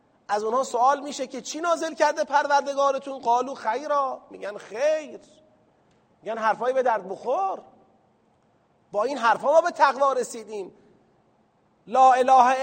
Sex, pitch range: male, 205-265 Hz